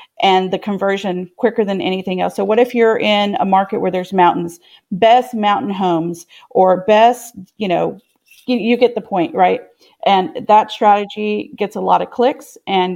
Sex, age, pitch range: female, 40-59, 190-245 Hz